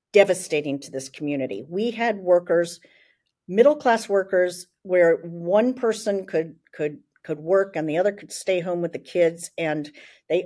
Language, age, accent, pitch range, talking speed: English, 50-69, American, 155-195 Hz, 160 wpm